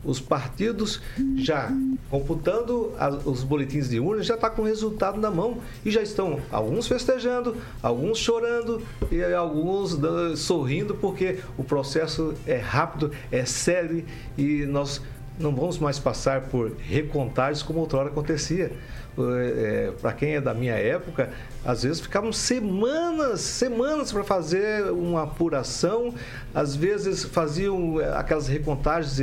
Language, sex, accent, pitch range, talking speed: Portuguese, male, Brazilian, 125-195 Hz, 130 wpm